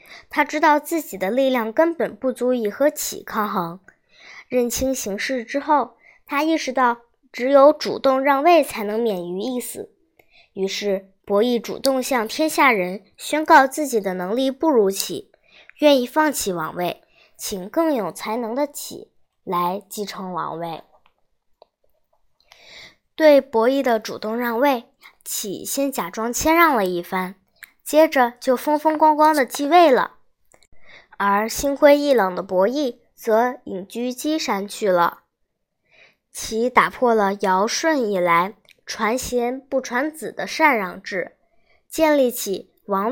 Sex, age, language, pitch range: male, 10-29, Chinese, 200-290 Hz